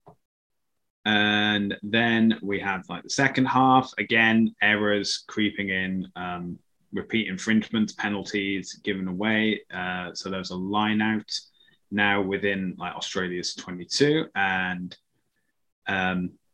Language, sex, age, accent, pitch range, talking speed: English, male, 20-39, British, 95-125 Hz, 115 wpm